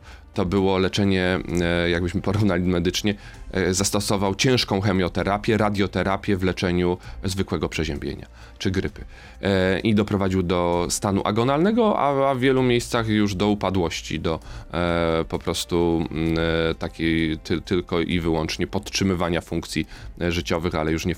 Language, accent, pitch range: Polish, native, 85-100 Hz